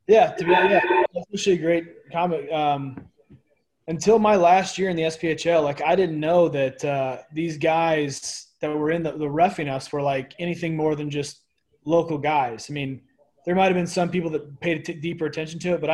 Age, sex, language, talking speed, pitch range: 20-39, male, English, 205 wpm, 140-160 Hz